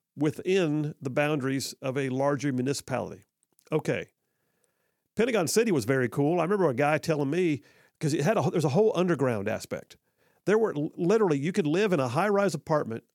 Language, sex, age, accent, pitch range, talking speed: English, male, 50-69, American, 130-175 Hz, 165 wpm